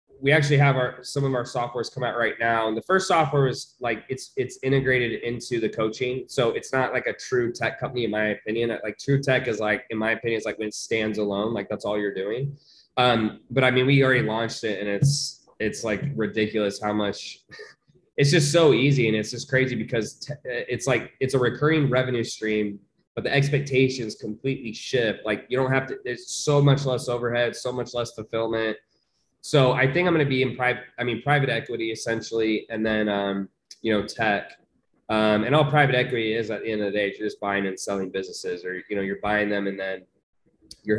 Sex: male